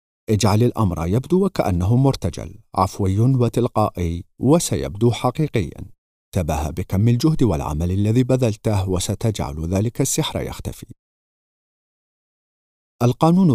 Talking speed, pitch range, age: 90 wpm, 90-125 Hz, 50-69